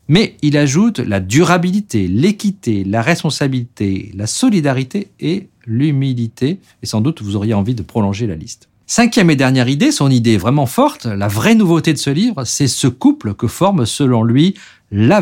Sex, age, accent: male, 50-69, French